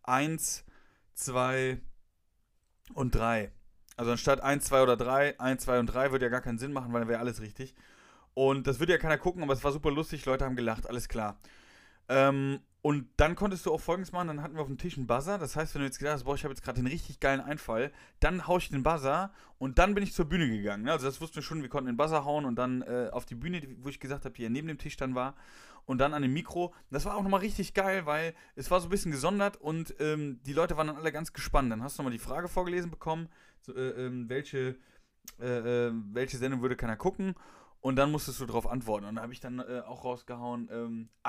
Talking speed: 250 wpm